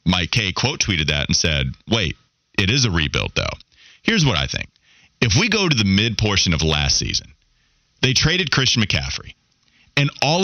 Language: English